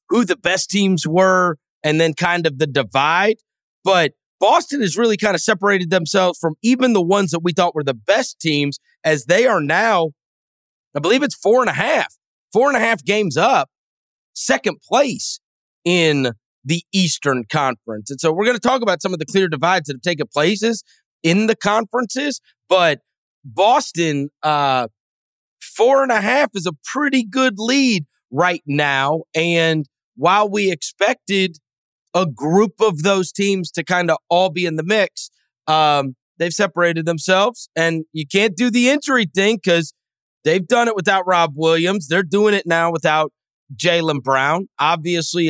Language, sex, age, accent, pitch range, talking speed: English, male, 30-49, American, 145-200 Hz, 170 wpm